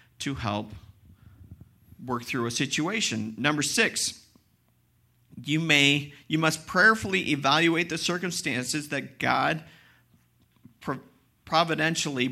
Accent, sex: American, male